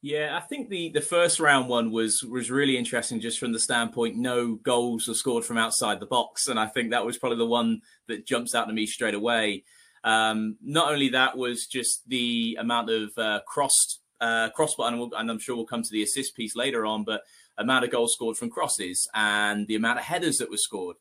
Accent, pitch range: British, 115-140 Hz